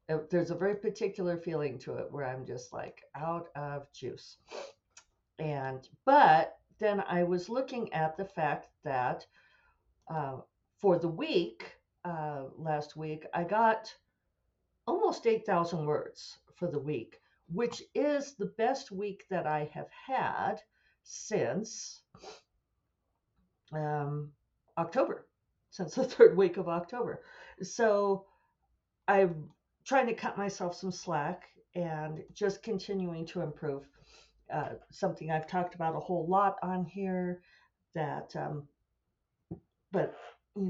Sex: female